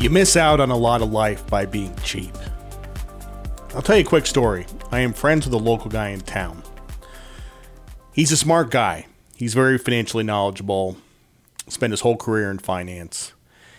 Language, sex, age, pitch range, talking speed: English, male, 40-59, 105-160 Hz, 175 wpm